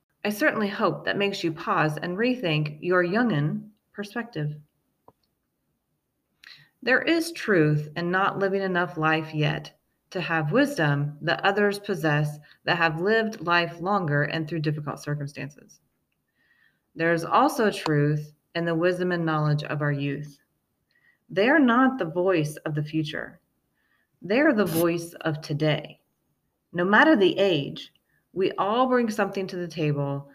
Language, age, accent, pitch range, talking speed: English, 30-49, American, 150-200 Hz, 145 wpm